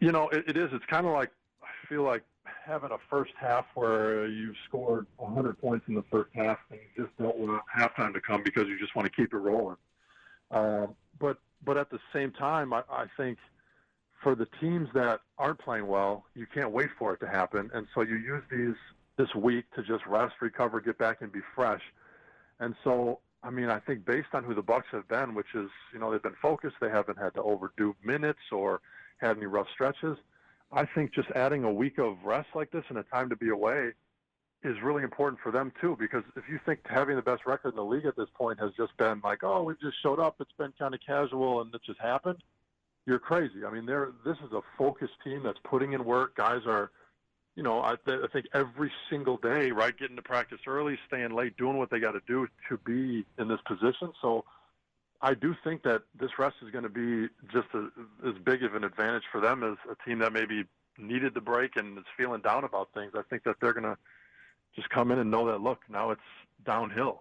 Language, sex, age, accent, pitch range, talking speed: English, male, 50-69, American, 110-140 Hz, 230 wpm